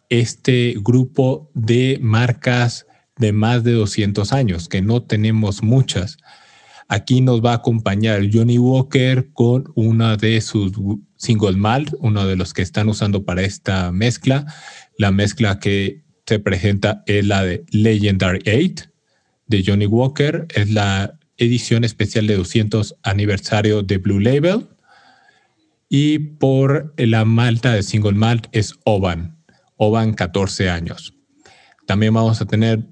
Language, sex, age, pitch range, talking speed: Spanish, male, 40-59, 100-125 Hz, 135 wpm